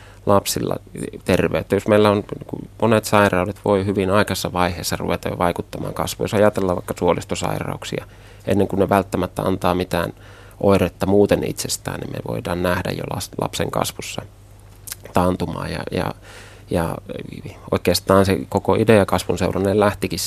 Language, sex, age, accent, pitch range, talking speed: Finnish, male, 30-49, native, 90-105 Hz, 135 wpm